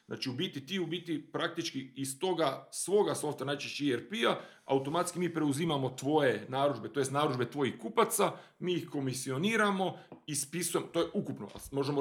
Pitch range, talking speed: 130-165 Hz, 155 wpm